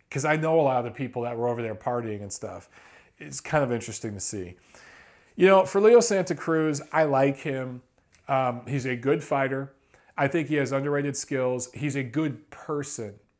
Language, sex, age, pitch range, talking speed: English, male, 40-59, 125-155 Hz, 200 wpm